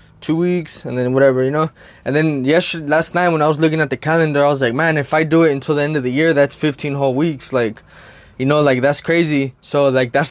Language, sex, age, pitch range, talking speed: English, male, 20-39, 130-160 Hz, 270 wpm